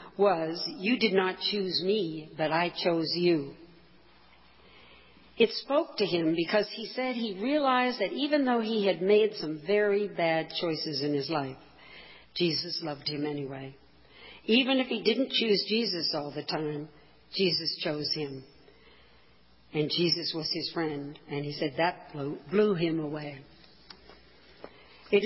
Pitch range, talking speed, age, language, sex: 155-210 Hz, 145 wpm, 60-79, English, female